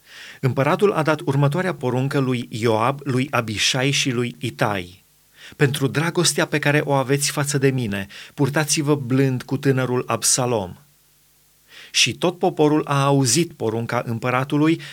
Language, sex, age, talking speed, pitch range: Romanian, male, 30-49, 135 wpm, 125-150 Hz